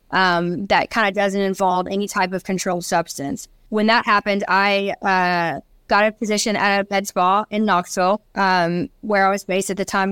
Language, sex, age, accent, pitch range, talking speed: English, female, 20-39, American, 190-215 Hz, 195 wpm